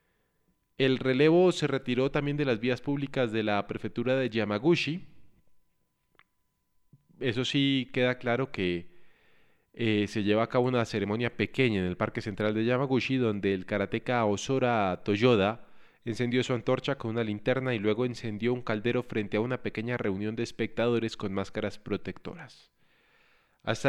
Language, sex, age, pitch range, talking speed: Spanish, male, 20-39, 105-135 Hz, 150 wpm